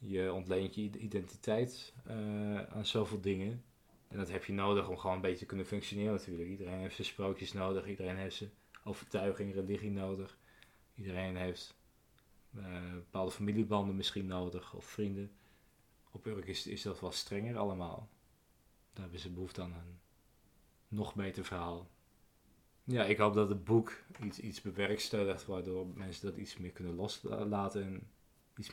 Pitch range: 95-110 Hz